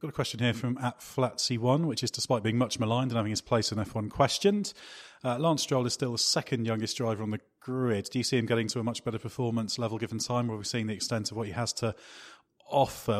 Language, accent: English, British